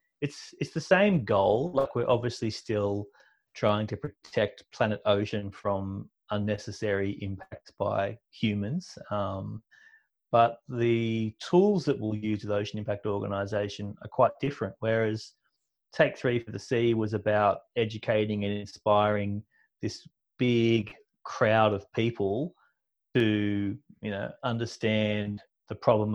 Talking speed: 125 wpm